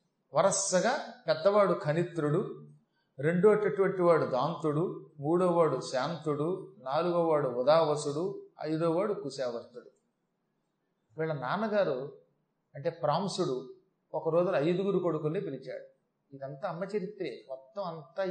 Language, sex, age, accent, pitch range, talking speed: Telugu, male, 30-49, native, 150-195 Hz, 85 wpm